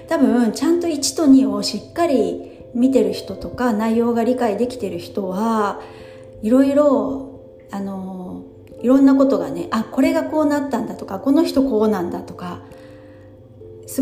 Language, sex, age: Japanese, female, 40-59